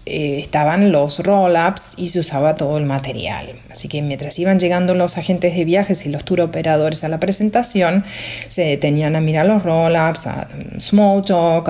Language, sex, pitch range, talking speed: Spanish, female, 155-195 Hz, 185 wpm